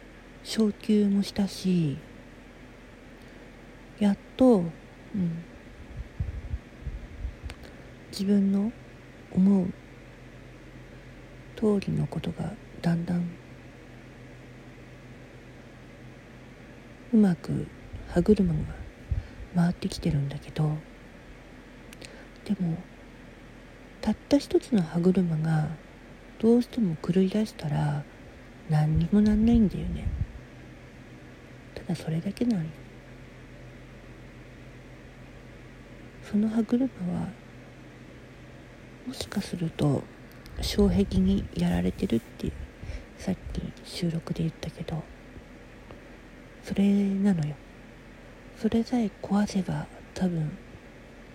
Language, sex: Japanese, female